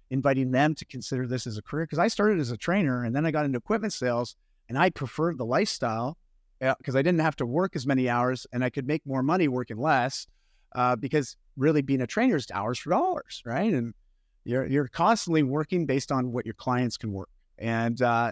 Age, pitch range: 30-49, 120-155 Hz